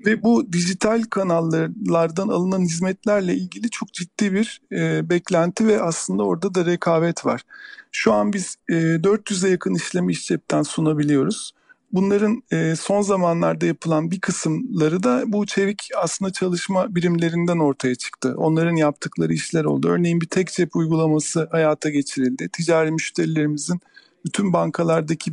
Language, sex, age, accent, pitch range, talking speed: Turkish, male, 50-69, native, 160-195 Hz, 135 wpm